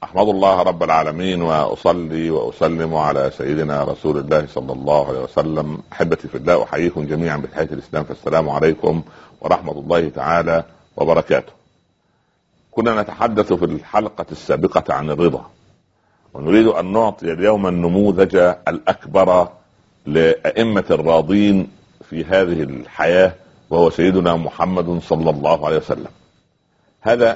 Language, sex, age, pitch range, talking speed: Arabic, male, 50-69, 85-100 Hz, 115 wpm